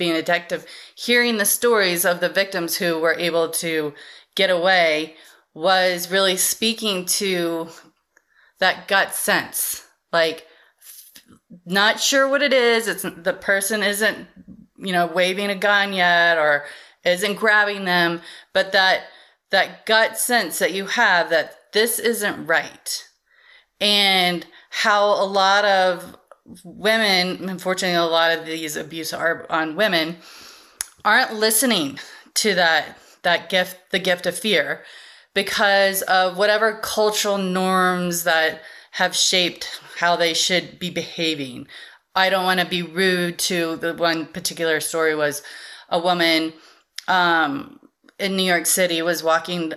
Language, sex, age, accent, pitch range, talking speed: English, female, 30-49, American, 170-205 Hz, 135 wpm